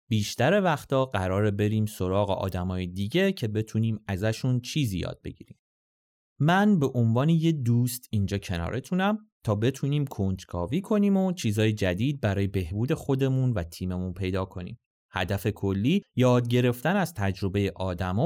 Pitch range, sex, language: 95-155 Hz, male, Persian